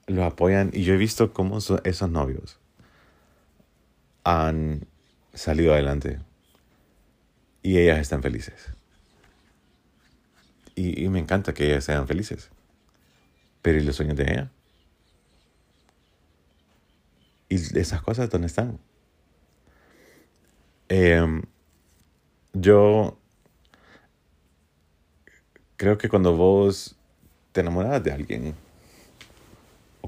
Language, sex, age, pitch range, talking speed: Spanish, male, 40-59, 75-95 Hz, 95 wpm